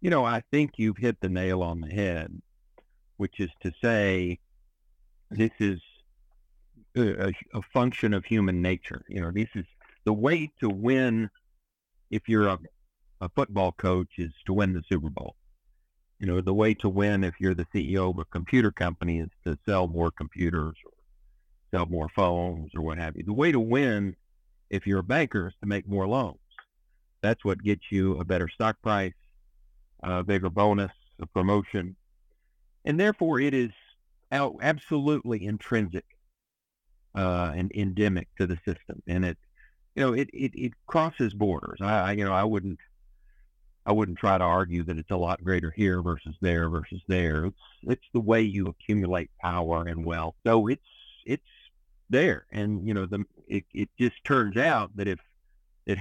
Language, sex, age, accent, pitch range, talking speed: English, male, 50-69, American, 85-105 Hz, 175 wpm